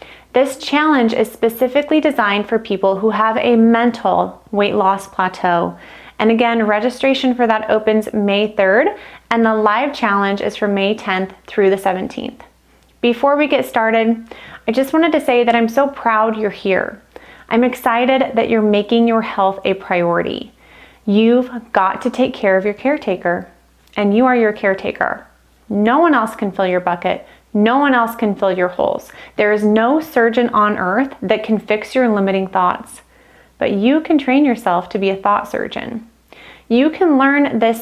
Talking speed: 175 wpm